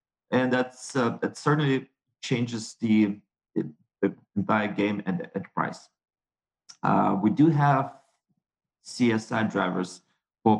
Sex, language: male, English